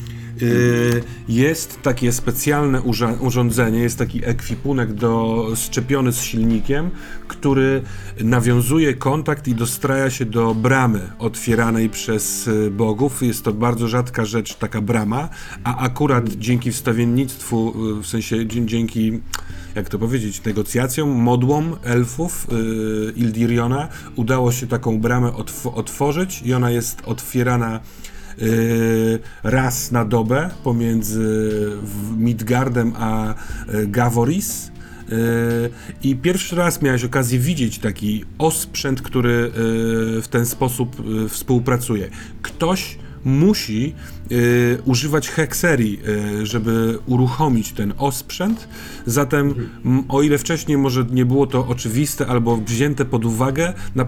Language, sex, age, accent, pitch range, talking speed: Polish, male, 40-59, native, 115-130 Hz, 105 wpm